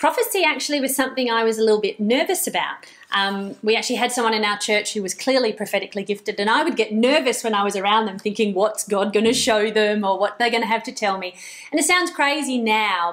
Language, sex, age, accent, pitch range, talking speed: English, female, 30-49, Australian, 200-265 Hz, 250 wpm